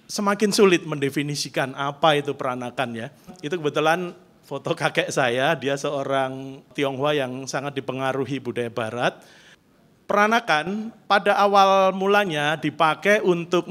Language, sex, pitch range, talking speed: Indonesian, male, 140-185 Hz, 115 wpm